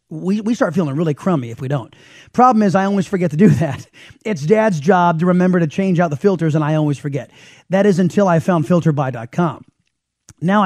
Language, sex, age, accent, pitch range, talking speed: English, male, 30-49, American, 160-215 Hz, 215 wpm